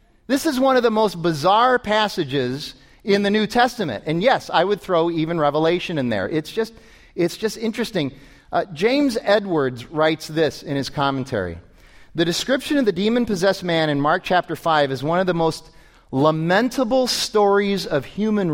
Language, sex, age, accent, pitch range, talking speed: English, male, 40-59, American, 150-210 Hz, 170 wpm